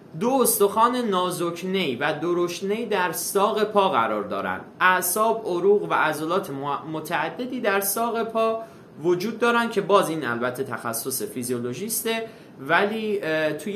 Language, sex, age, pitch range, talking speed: Persian, male, 20-39, 130-200 Hz, 120 wpm